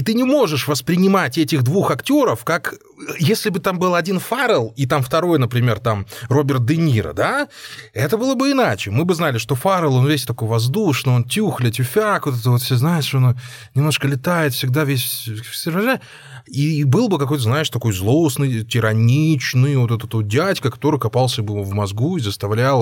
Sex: male